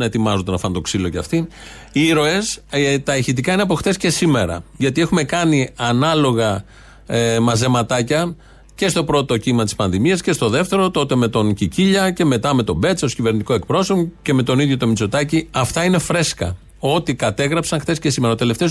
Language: Greek